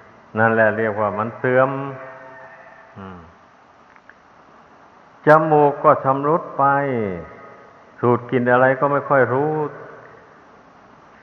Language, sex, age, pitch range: Thai, male, 60-79, 115-135 Hz